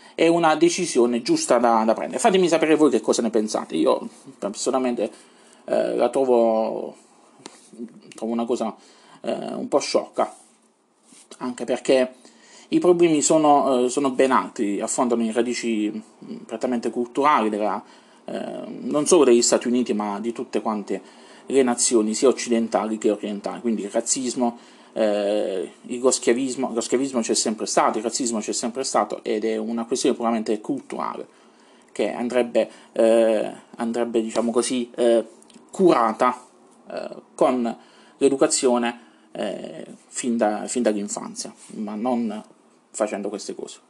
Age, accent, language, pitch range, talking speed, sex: 30-49, native, Italian, 115-145 Hz, 135 wpm, male